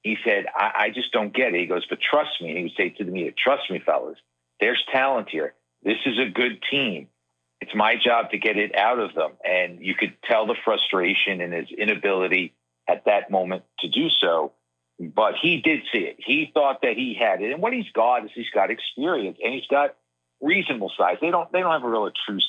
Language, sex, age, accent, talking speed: English, male, 50-69, American, 230 wpm